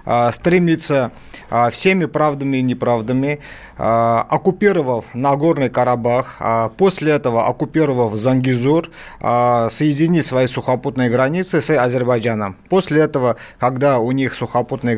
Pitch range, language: 120-155 Hz, Russian